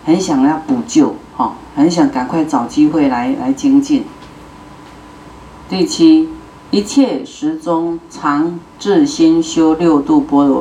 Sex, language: female, Chinese